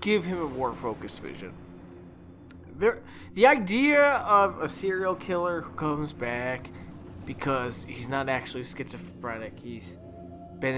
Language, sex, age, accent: English, male, 20-39, American